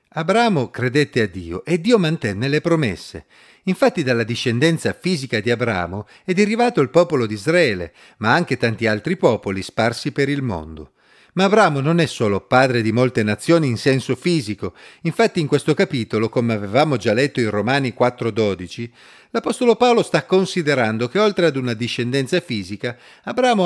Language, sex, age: Italian, male, 40-59